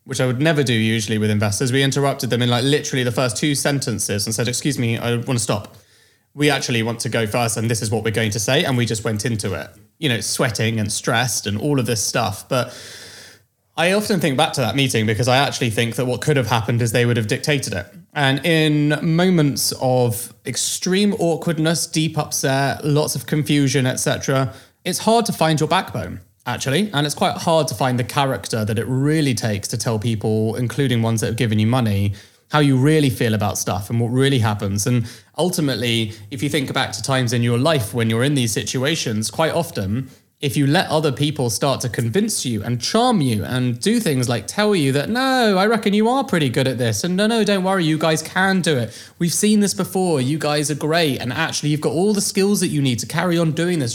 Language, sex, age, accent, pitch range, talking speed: English, male, 20-39, British, 115-155 Hz, 230 wpm